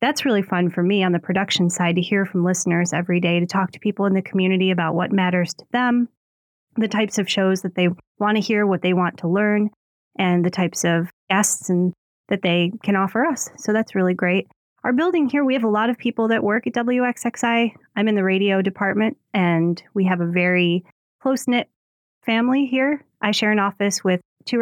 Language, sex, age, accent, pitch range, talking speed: English, female, 30-49, American, 180-215 Hz, 215 wpm